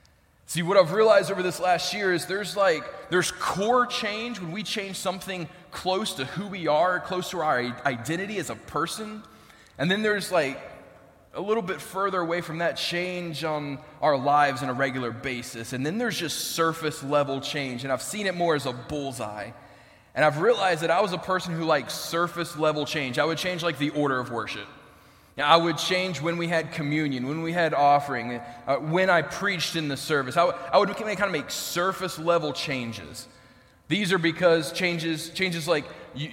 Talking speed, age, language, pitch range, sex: 200 wpm, 20-39, English, 125-180 Hz, male